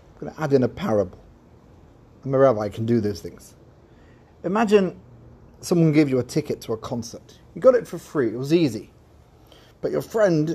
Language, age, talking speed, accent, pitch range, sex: English, 30-49, 195 wpm, British, 120-165 Hz, male